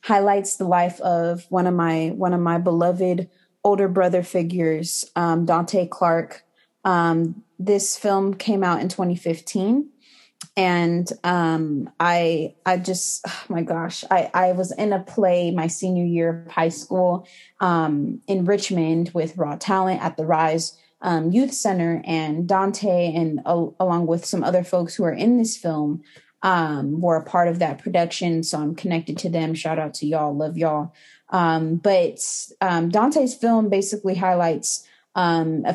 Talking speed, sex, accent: 165 wpm, female, American